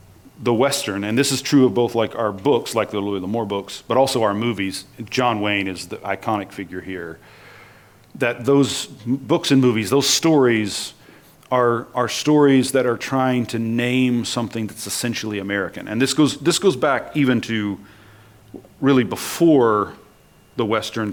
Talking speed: 160 wpm